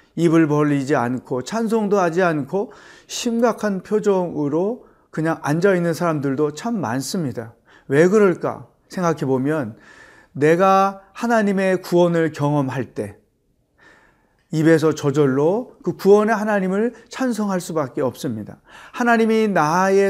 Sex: male